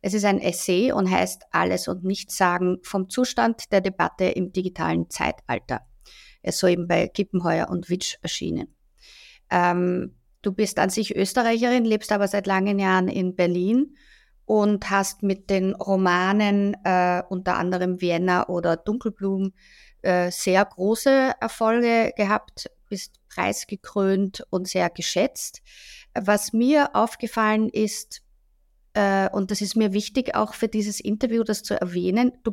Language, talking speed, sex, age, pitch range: German, 140 wpm, female, 50-69, 185-225 Hz